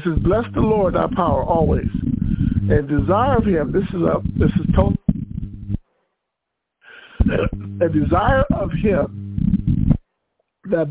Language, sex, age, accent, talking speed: English, male, 60-79, American, 125 wpm